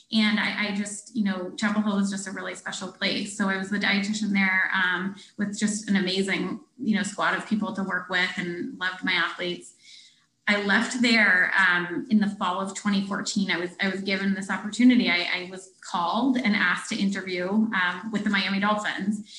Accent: American